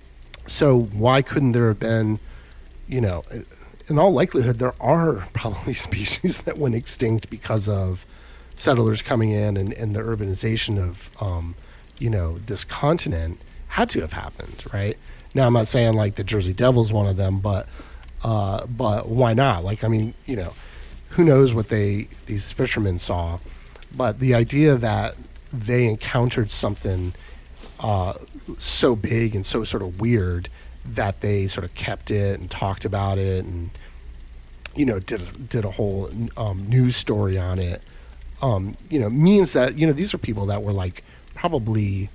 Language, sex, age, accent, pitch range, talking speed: English, male, 30-49, American, 90-120 Hz, 170 wpm